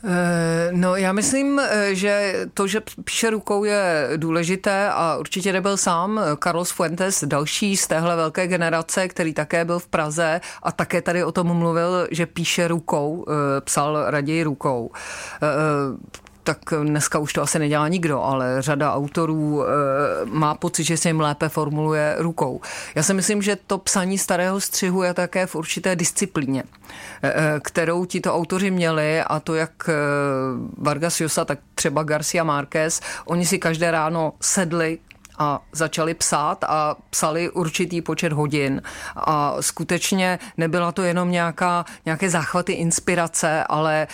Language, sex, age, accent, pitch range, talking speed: Czech, female, 40-59, native, 155-180 Hz, 145 wpm